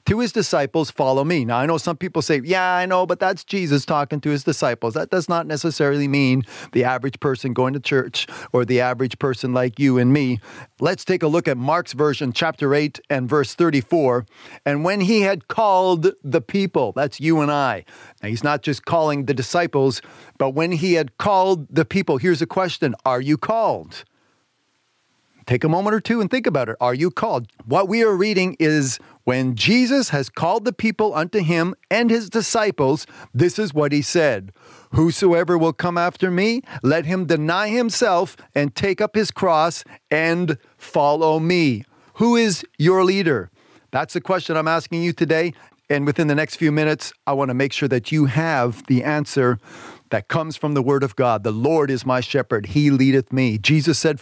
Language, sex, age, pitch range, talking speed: English, male, 40-59, 135-175 Hz, 195 wpm